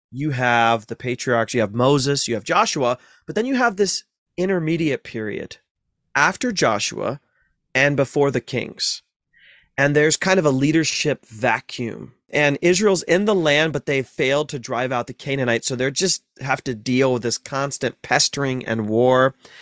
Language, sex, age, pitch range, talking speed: English, male, 30-49, 120-155 Hz, 170 wpm